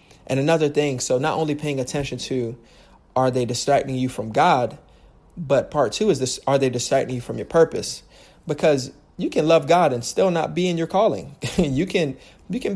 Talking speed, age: 200 wpm, 30-49